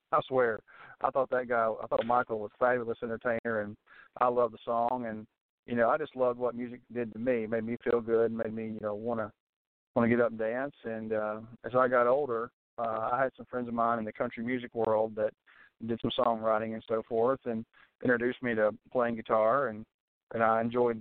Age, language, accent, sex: 40-59, English, American, male